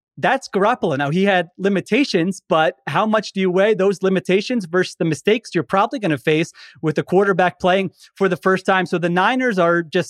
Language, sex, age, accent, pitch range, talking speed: English, male, 30-49, American, 155-205 Hz, 210 wpm